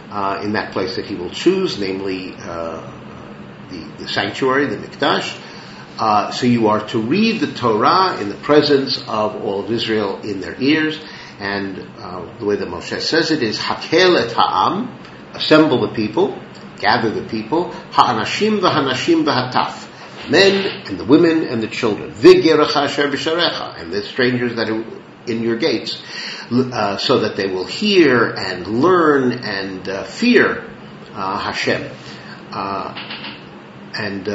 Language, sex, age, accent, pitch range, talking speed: English, male, 50-69, American, 100-155 Hz, 145 wpm